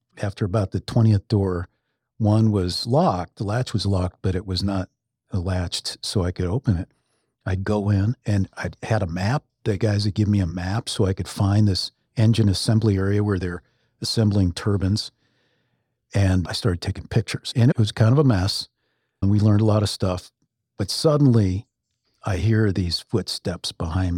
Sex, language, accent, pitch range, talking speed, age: male, English, American, 100-135 Hz, 185 wpm, 50-69